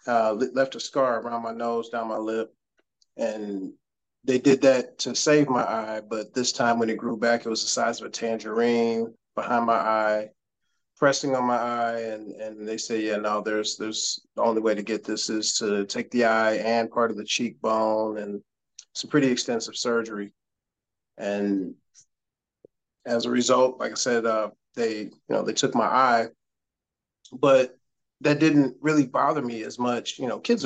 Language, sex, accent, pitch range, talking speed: English, male, American, 110-125 Hz, 185 wpm